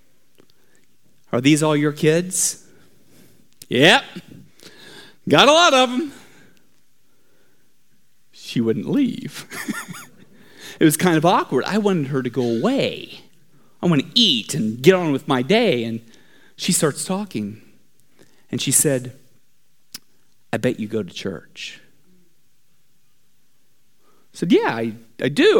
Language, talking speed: English, 125 wpm